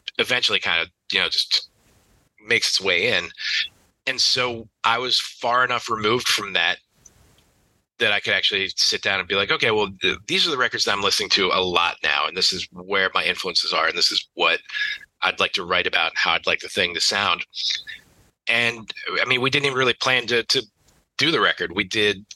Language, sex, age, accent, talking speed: English, male, 30-49, American, 215 wpm